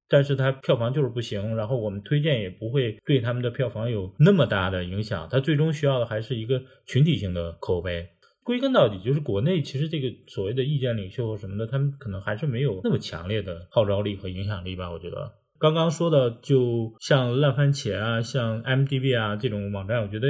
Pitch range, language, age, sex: 105-145 Hz, Chinese, 20-39, male